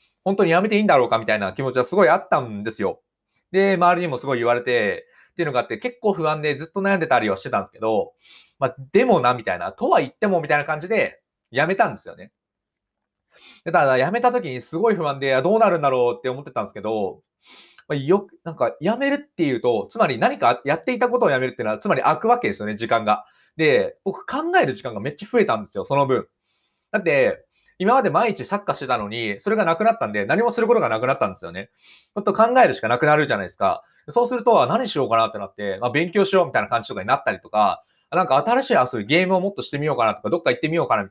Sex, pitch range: male, 135-225 Hz